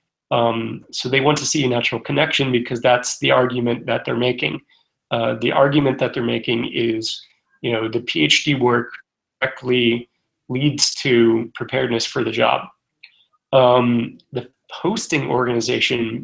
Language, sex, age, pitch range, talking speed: English, male, 30-49, 115-130 Hz, 145 wpm